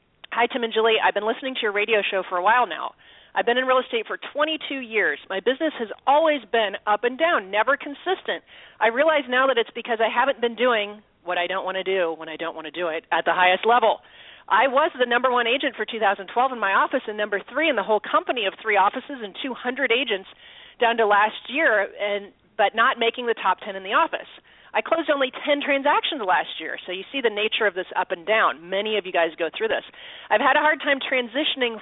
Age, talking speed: 40-59, 240 wpm